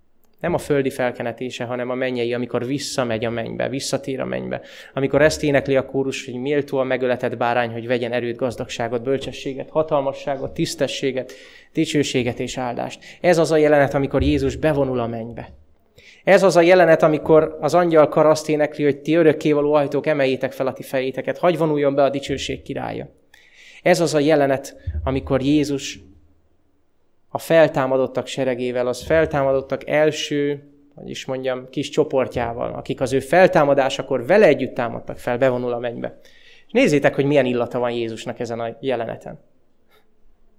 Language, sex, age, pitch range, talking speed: Hungarian, male, 20-39, 125-145 Hz, 150 wpm